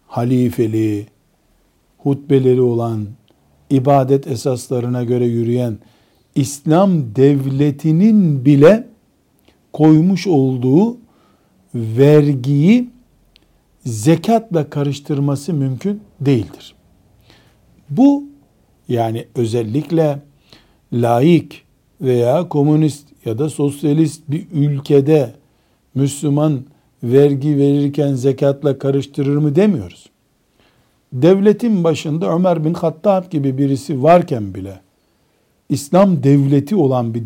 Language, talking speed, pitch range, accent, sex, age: Turkish, 75 wpm, 130-170 Hz, native, male, 60-79